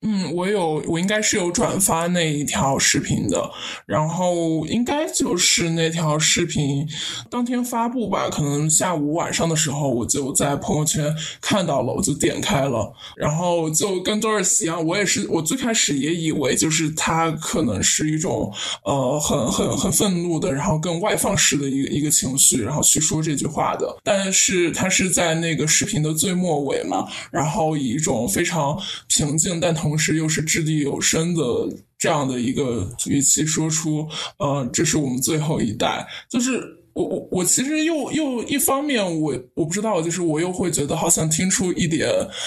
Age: 20-39